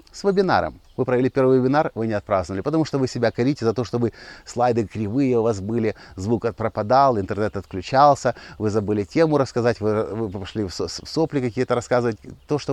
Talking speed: 185 wpm